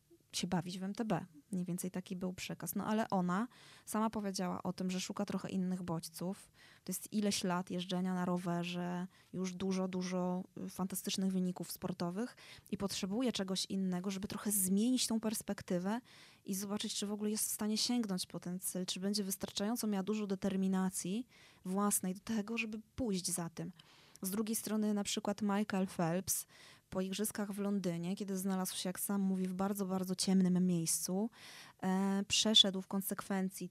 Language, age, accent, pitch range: Polish, 20-39, native, 185-205 Hz